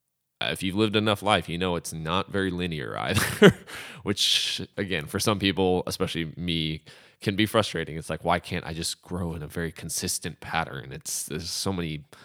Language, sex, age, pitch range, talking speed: English, male, 20-39, 80-95 Hz, 185 wpm